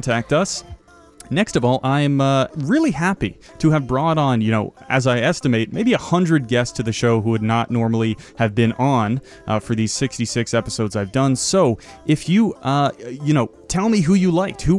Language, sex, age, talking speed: English, male, 30-49, 205 wpm